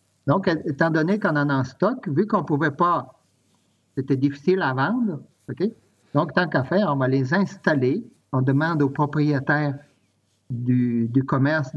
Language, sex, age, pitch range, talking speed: French, male, 50-69, 130-160 Hz, 170 wpm